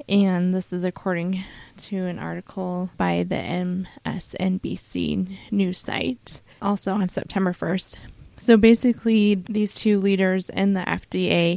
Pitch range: 185-210 Hz